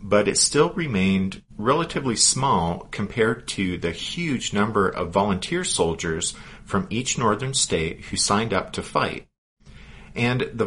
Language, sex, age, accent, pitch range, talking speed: English, male, 40-59, American, 80-100 Hz, 140 wpm